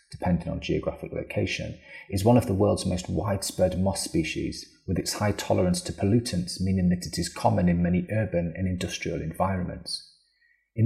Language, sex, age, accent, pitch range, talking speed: English, male, 30-49, British, 90-105 Hz, 170 wpm